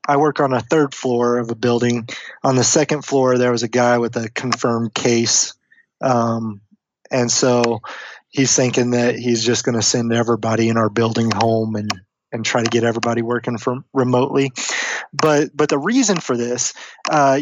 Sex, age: male, 20-39